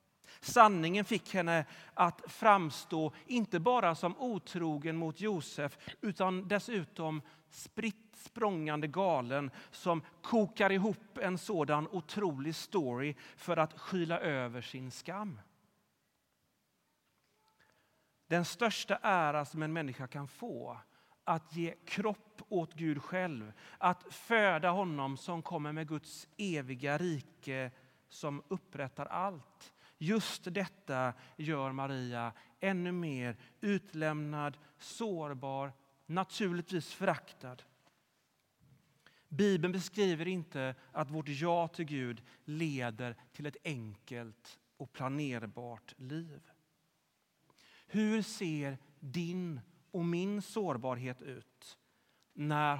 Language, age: Swedish, 40-59